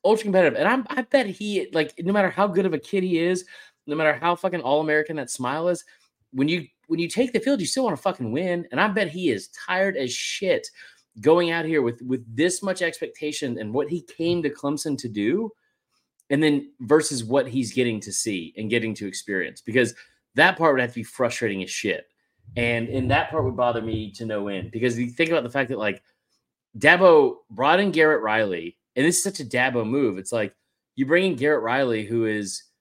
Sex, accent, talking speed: male, American, 225 wpm